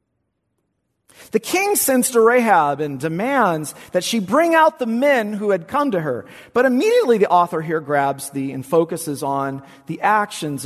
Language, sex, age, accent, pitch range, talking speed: English, male, 40-59, American, 140-200 Hz, 170 wpm